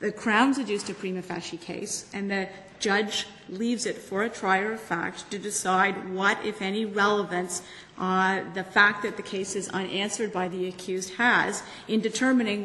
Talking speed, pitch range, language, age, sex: 175 wpm, 180-210 Hz, English, 40-59, female